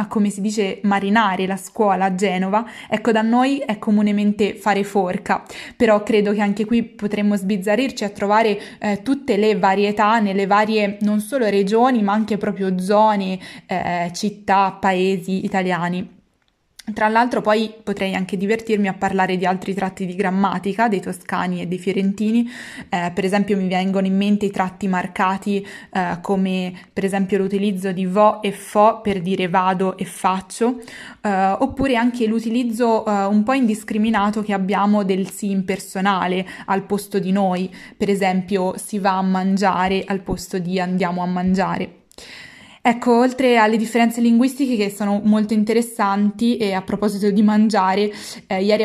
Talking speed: 155 wpm